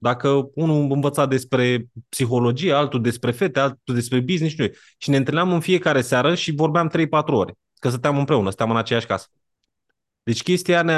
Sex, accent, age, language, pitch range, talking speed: male, native, 20-39, Romanian, 115-165 Hz, 175 wpm